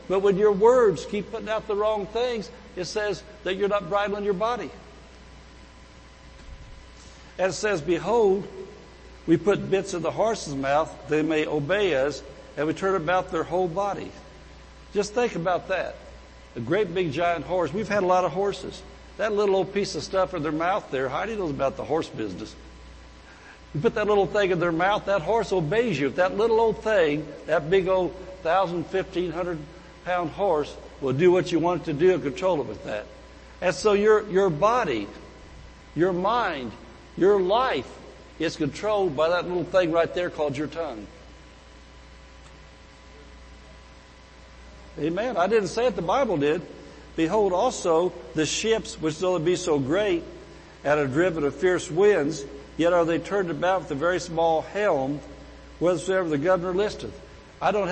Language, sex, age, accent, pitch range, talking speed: English, male, 60-79, American, 145-200 Hz, 175 wpm